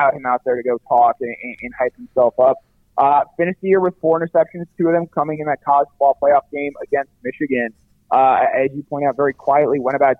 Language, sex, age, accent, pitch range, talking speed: English, male, 30-49, American, 130-160 Hz, 235 wpm